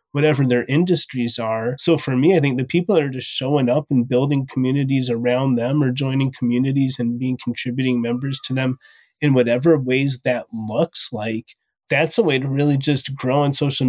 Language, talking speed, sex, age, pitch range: English, 195 wpm, male, 30-49, 125-155 Hz